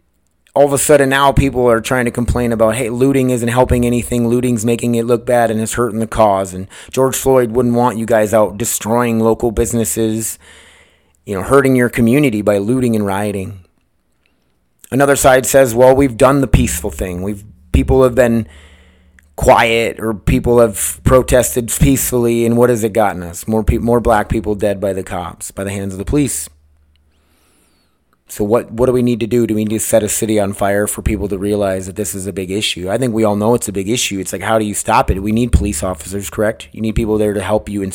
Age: 30-49